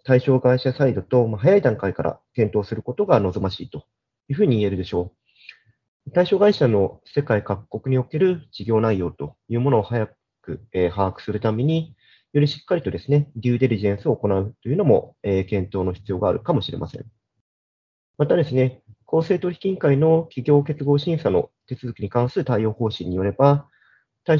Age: 40-59